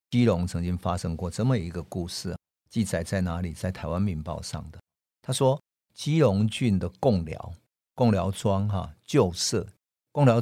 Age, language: 50-69, Chinese